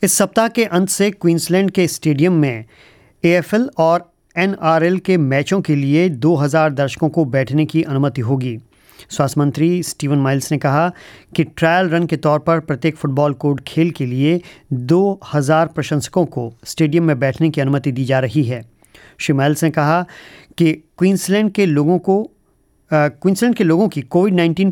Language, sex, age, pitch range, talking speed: English, male, 40-59, 145-175 Hz, 155 wpm